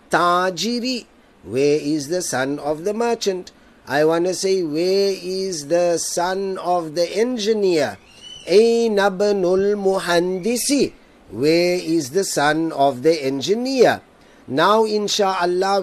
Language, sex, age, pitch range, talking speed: Arabic, male, 50-69, 165-215 Hz, 115 wpm